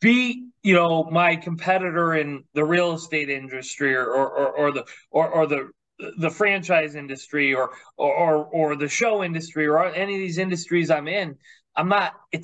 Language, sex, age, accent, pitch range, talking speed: English, male, 30-49, American, 155-205 Hz, 185 wpm